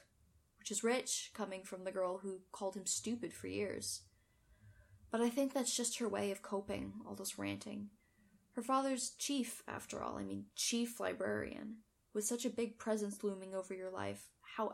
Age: 10-29